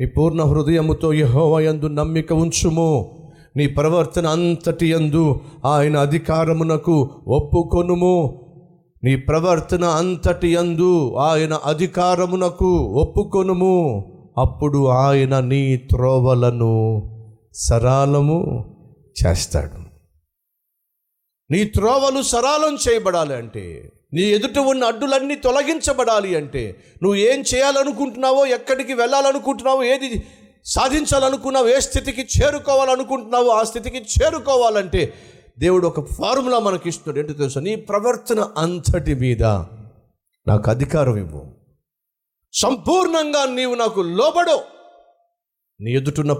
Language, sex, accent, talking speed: Telugu, male, native, 75 wpm